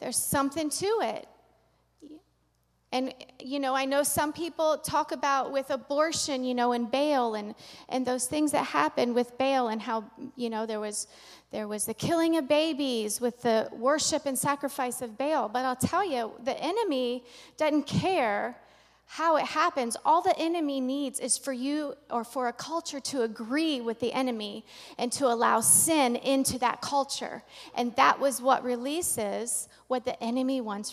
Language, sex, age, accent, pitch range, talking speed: English, female, 40-59, American, 235-285 Hz, 175 wpm